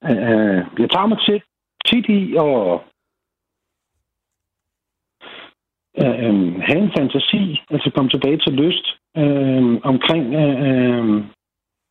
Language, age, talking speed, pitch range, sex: Danish, 60-79, 85 wpm, 90-140 Hz, male